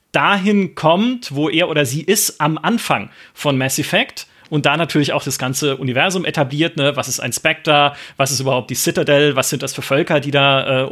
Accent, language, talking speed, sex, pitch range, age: German, German, 210 wpm, male, 140-175 Hz, 30-49